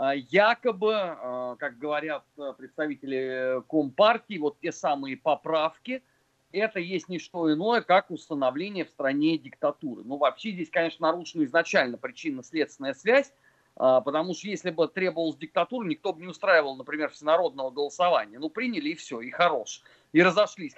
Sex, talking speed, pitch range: male, 140 wpm, 140-205 Hz